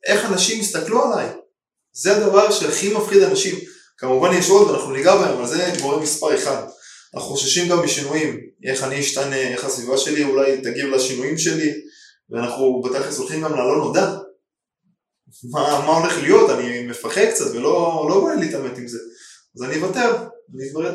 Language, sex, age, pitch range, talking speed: Hebrew, male, 20-39, 140-210 Hz, 165 wpm